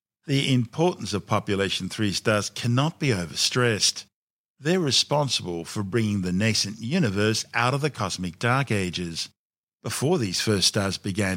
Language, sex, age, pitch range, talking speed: English, male, 50-69, 95-130 Hz, 140 wpm